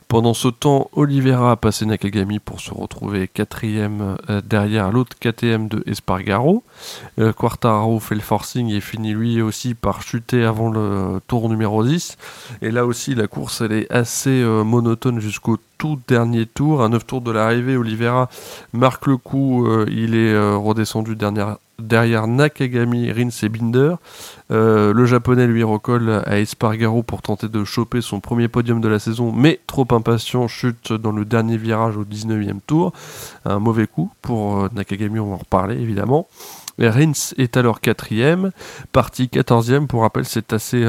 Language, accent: French, French